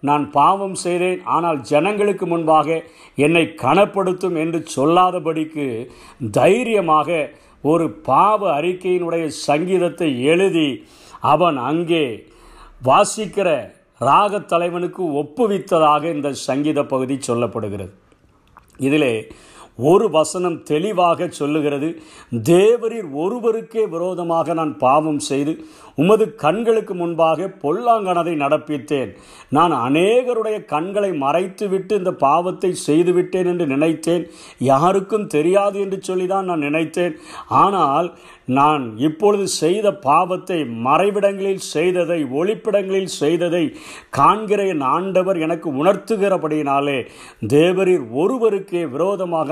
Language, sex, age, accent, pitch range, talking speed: Tamil, male, 50-69, native, 150-190 Hz, 85 wpm